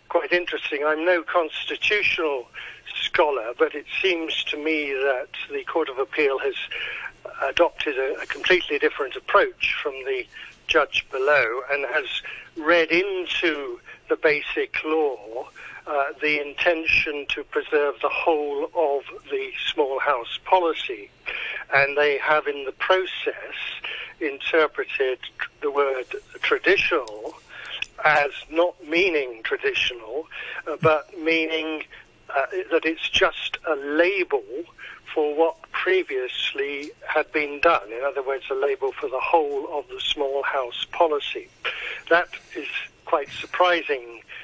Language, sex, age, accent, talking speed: English, male, 60-79, British, 125 wpm